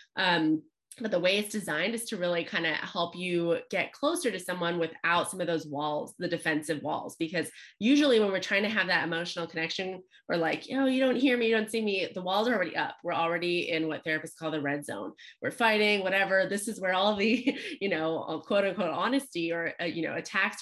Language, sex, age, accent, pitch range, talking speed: English, female, 20-39, American, 160-200 Hz, 230 wpm